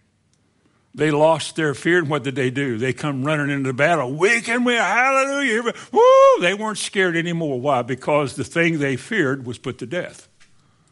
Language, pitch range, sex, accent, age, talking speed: English, 135-205 Hz, male, American, 60-79, 180 wpm